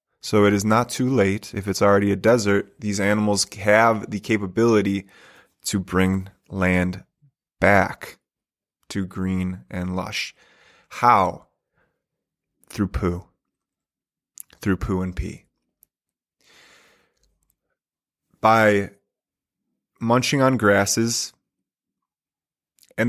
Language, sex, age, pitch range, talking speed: English, male, 20-39, 100-115 Hz, 95 wpm